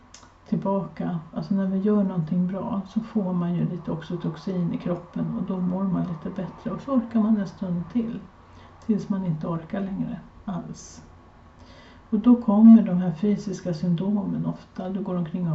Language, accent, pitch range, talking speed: Swedish, native, 160-205 Hz, 180 wpm